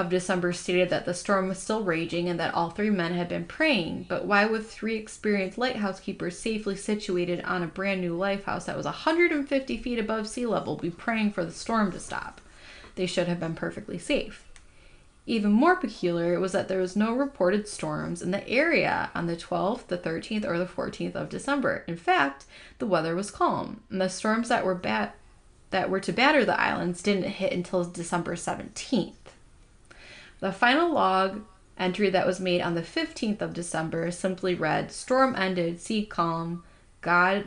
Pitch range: 175-215 Hz